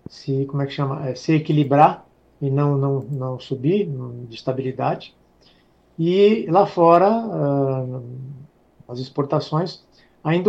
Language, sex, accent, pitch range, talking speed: Portuguese, male, Brazilian, 135-160 Hz, 115 wpm